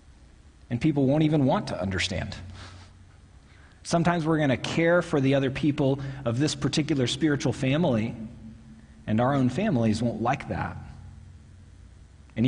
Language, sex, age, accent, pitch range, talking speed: English, male, 40-59, American, 100-130 Hz, 140 wpm